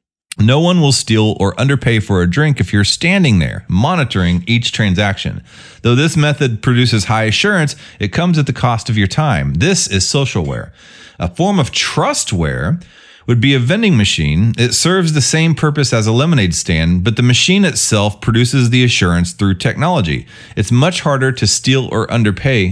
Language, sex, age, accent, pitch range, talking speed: English, male, 30-49, American, 100-145 Hz, 180 wpm